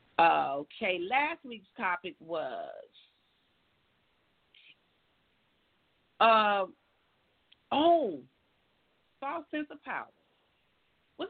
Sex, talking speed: female, 65 wpm